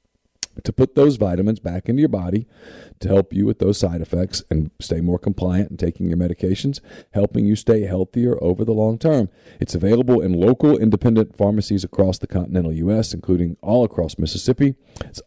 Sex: male